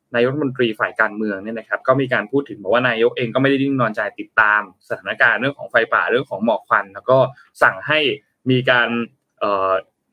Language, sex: Thai, male